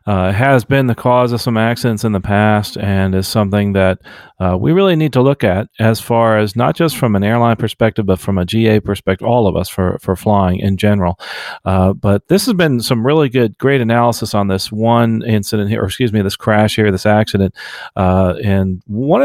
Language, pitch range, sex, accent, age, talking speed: English, 100-125 Hz, male, American, 40-59, 220 wpm